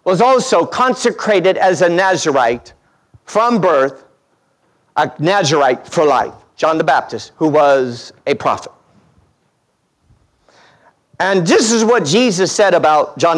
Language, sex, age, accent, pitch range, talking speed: English, male, 50-69, American, 210-285 Hz, 120 wpm